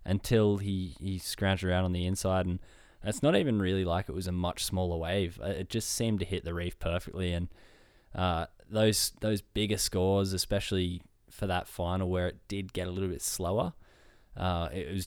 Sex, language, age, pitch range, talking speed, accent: male, English, 10-29, 90-95 Hz, 195 wpm, Australian